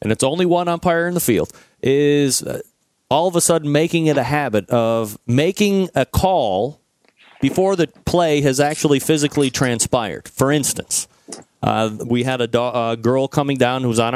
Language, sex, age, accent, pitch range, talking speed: English, male, 40-59, American, 120-175 Hz, 175 wpm